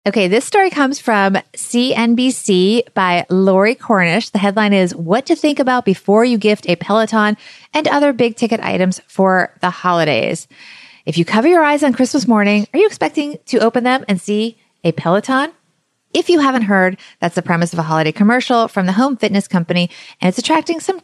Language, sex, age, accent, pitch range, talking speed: English, female, 30-49, American, 180-250 Hz, 190 wpm